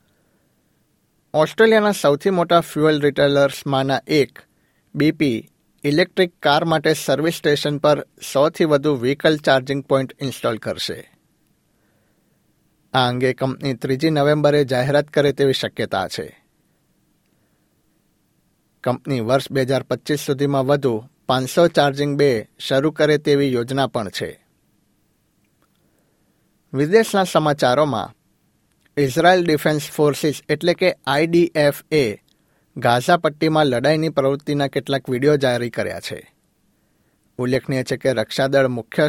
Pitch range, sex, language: 130-150 Hz, male, Gujarati